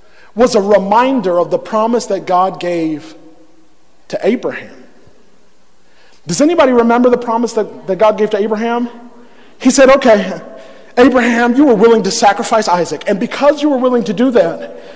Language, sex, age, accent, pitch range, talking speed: English, male, 40-59, American, 220-265 Hz, 160 wpm